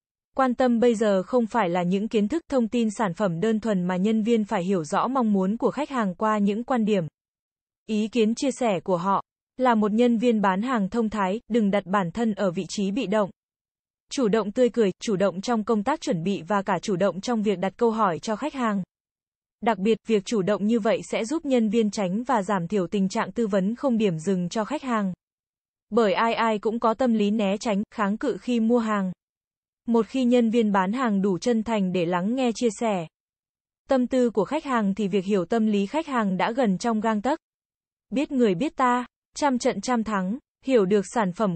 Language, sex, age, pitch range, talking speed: Vietnamese, female, 20-39, 200-240 Hz, 230 wpm